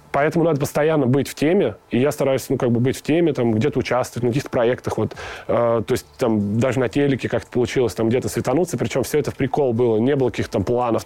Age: 20-39